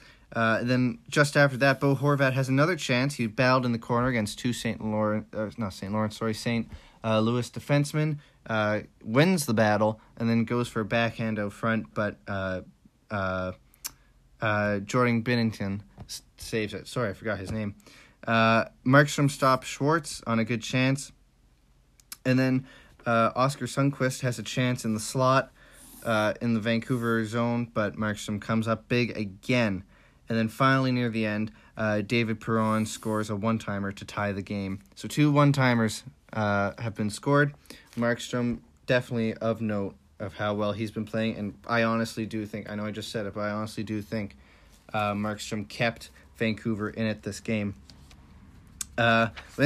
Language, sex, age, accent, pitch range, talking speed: English, male, 30-49, American, 105-130 Hz, 170 wpm